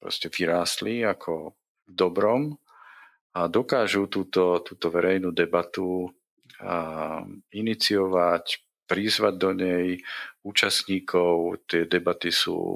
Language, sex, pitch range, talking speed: Slovak, male, 85-110 Hz, 85 wpm